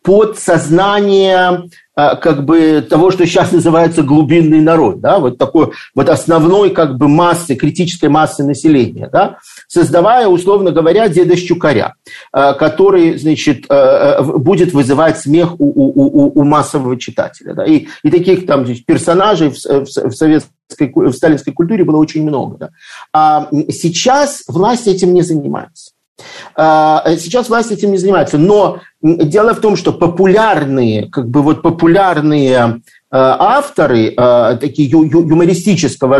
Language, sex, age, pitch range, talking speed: Russian, male, 50-69, 150-195 Hz, 110 wpm